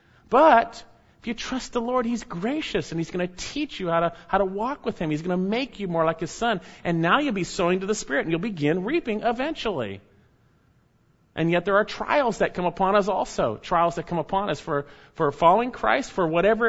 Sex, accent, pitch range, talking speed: male, American, 135-215 Hz, 230 wpm